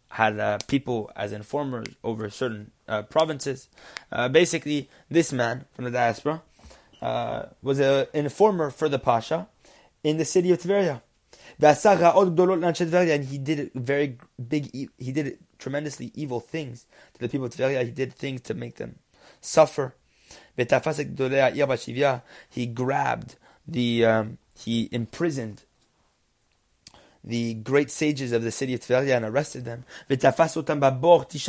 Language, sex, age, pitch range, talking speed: English, male, 20-39, 125-160 Hz, 130 wpm